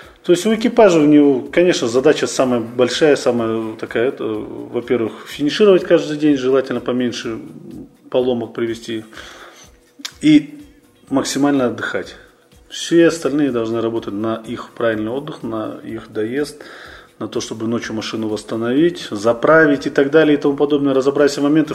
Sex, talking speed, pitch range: male, 140 wpm, 120-145 Hz